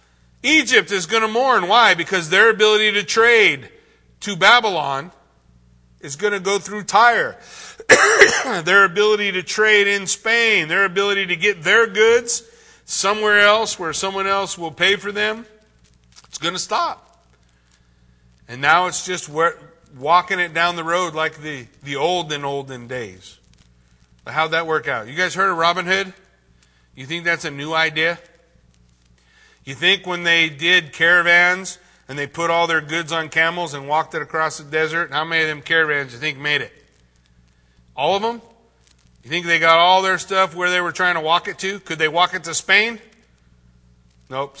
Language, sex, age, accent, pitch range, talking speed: English, male, 50-69, American, 130-190 Hz, 180 wpm